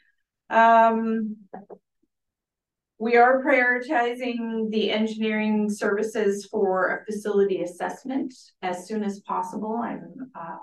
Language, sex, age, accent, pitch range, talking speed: English, female, 40-59, American, 180-220 Hz, 95 wpm